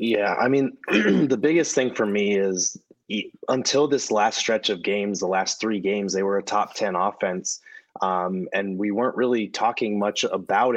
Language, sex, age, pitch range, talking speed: English, male, 20-39, 100-115 Hz, 185 wpm